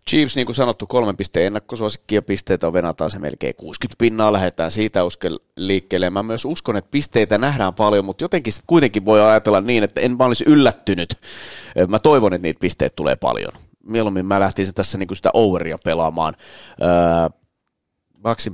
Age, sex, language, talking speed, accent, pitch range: 30-49, male, Finnish, 170 wpm, native, 90-110 Hz